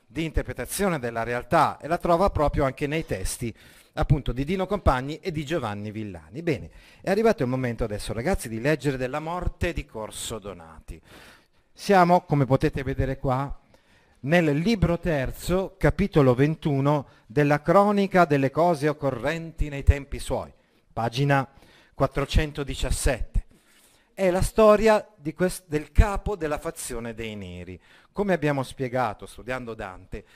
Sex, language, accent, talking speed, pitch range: male, Italian, native, 135 wpm, 115-160 Hz